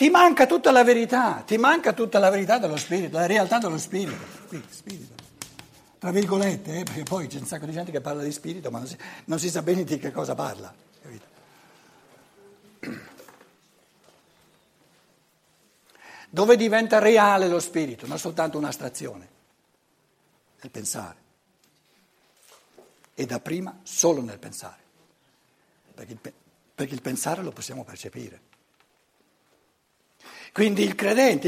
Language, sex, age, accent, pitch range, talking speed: Italian, male, 60-79, native, 155-205 Hz, 135 wpm